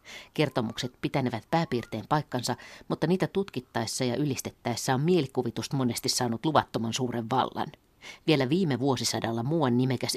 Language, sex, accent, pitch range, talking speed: Finnish, female, native, 115-145 Hz, 125 wpm